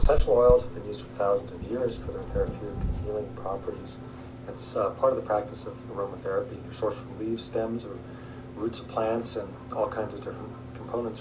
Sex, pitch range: male, 105-125 Hz